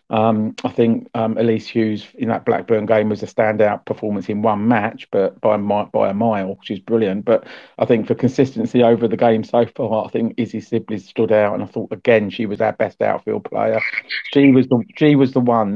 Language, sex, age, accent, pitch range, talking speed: English, male, 40-59, British, 105-120 Hz, 215 wpm